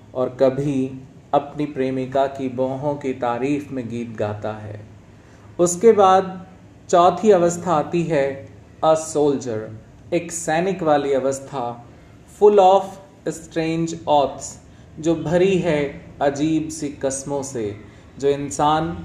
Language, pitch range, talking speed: Hindi, 125-165 Hz, 115 wpm